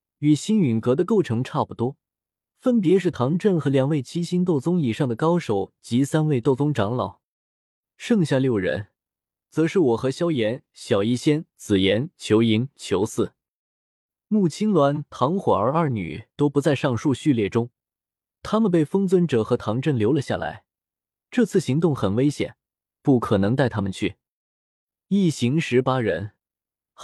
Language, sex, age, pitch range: Chinese, male, 20-39, 115-165 Hz